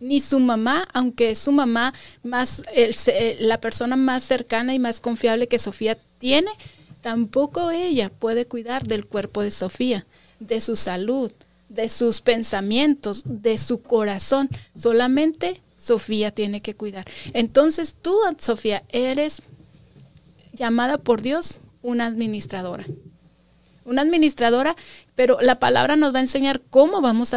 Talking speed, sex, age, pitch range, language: 135 wpm, female, 30-49, 205-260 Hz, Spanish